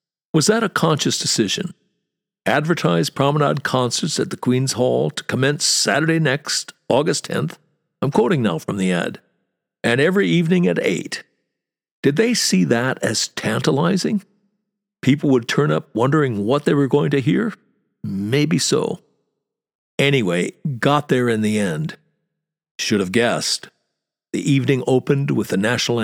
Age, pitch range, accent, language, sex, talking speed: 60-79, 115-155 Hz, American, English, male, 145 wpm